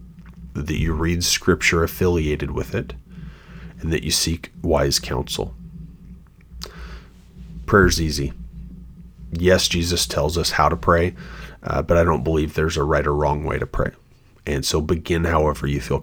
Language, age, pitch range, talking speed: English, 30-49, 75-90 Hz, 155 wpm